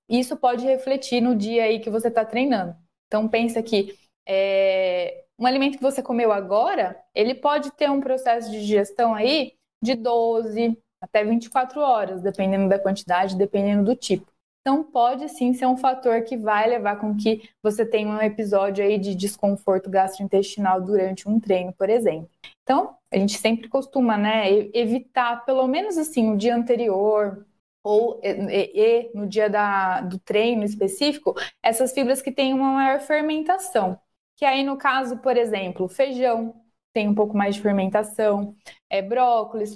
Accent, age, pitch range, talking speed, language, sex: Brazilian, 20-39, 205-255 Hz, 165 wpm, Portuguese, female